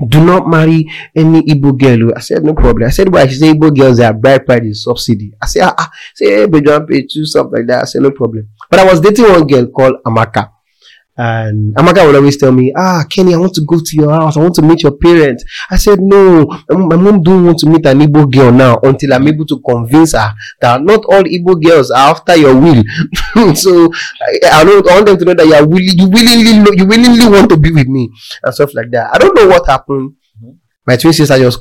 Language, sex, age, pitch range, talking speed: English, male, 30-49, 125-170 Hz, 245 wpm